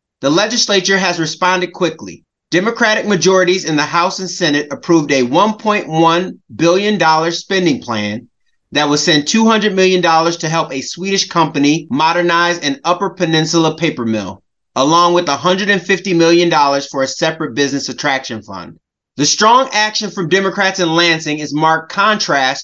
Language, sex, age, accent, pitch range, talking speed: English, male, 30-49, American, 150-195 Hz, 145 wpm